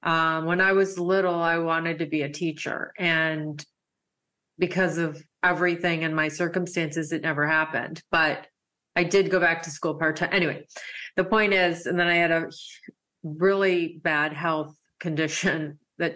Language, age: English, 30-49